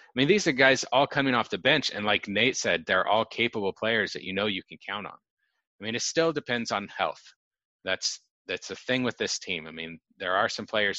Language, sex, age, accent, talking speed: English, male, 30-49, American, 245 wpm